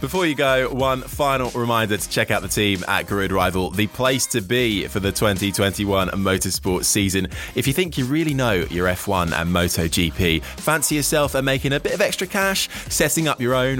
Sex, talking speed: male, 200 wpm